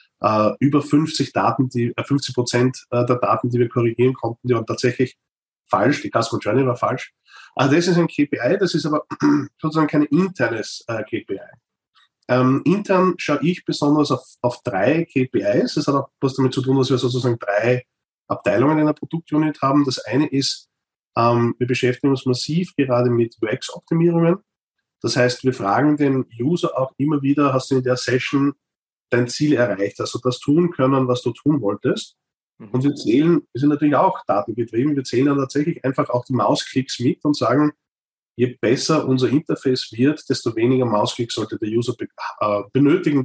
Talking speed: 180 wpm